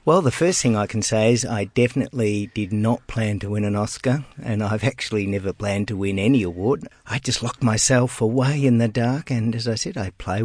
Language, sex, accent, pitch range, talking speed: English, male, Australian, 100-120 Hz, 230 wpm